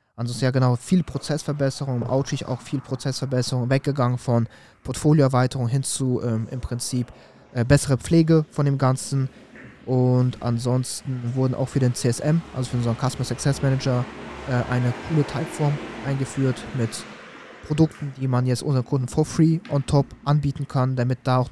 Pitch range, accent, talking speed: 125-140 Hz, German, 155 wpm